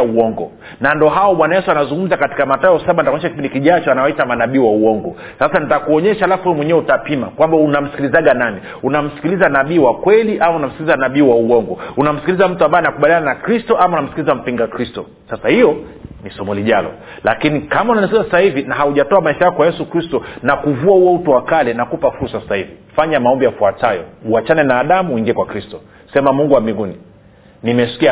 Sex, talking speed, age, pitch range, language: male, 180 wpm, 40-59, 115-160 Hz, Swahili